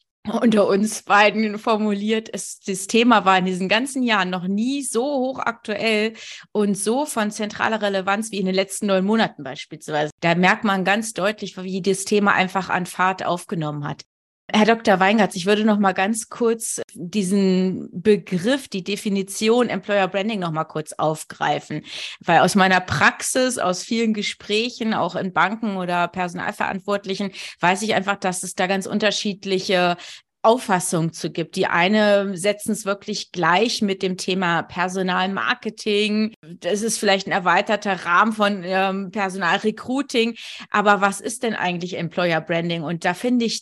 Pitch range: 185-220 Hz